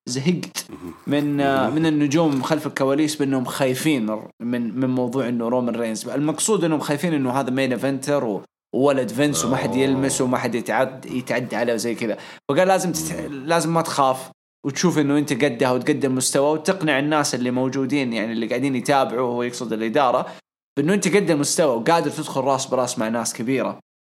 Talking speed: 165 wpm